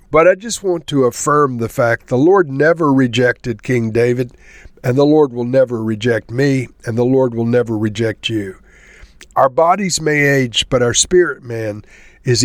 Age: 50-69